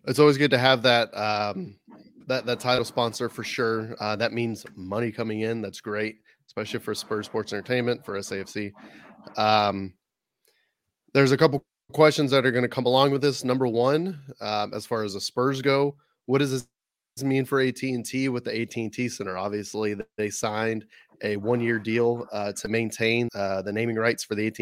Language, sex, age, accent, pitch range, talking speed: English, male, 30-49, American, 105-130 Hz, 185 wpm